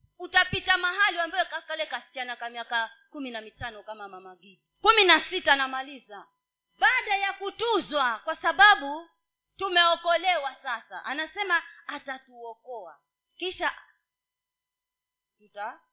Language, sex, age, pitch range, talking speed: Swahili, female, 30-49, 235-365 Hz, 95 wpm